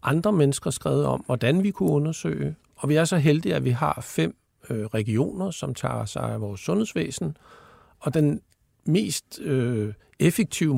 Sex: male